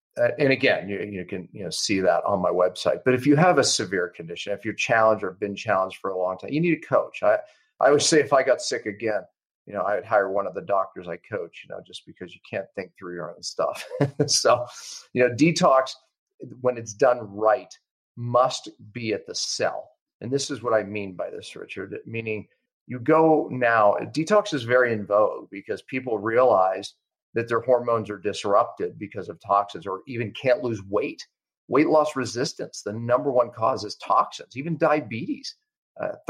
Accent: American